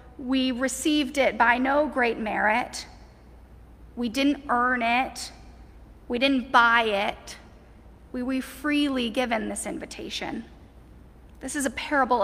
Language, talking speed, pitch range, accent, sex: English, 125 wpm, 215-255 Hz, American, female